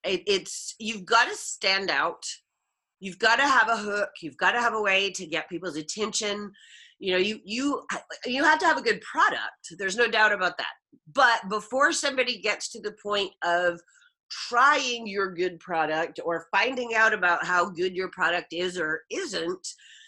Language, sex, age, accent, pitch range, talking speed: English, female, 30-49, American, 185-260 Hz, 180 wpm